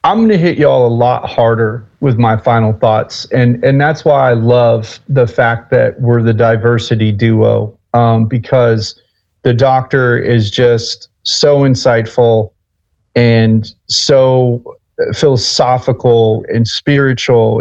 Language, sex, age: English, male, 40-59